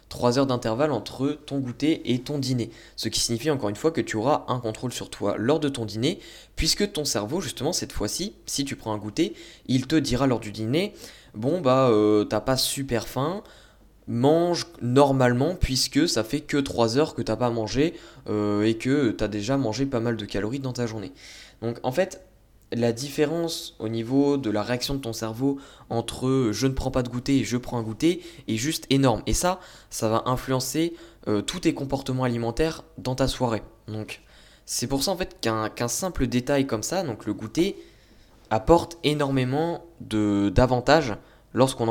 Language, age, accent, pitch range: French, 20-39, French, 115-145 Hz